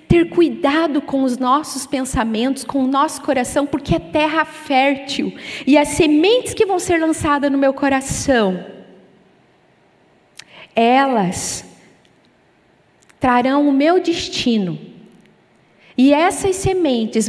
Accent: Brazilian